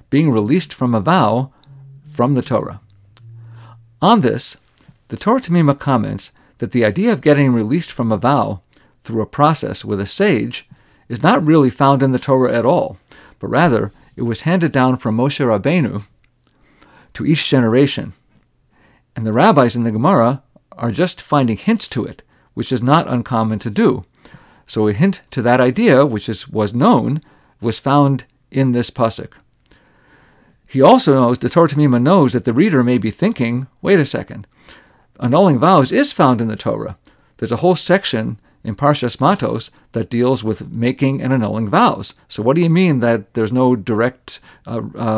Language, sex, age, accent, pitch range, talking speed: English, male, 50-69, American, 115-145 Hz, 170 wpm